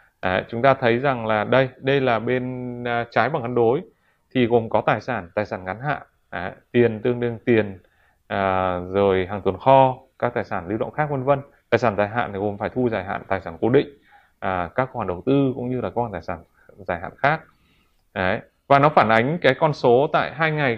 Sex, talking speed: male, 235 wpm